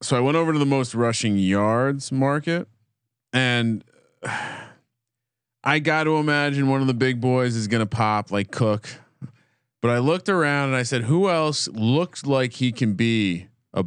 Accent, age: American, 30-49